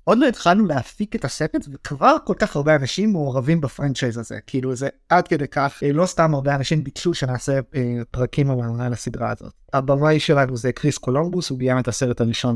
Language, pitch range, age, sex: Hebrew, 125-155 Hz, 30-49, male